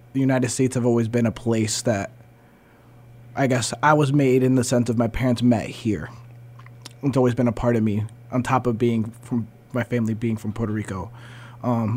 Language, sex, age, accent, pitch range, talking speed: English, male, 20-39, American, 115-130 Hz, 200 wpm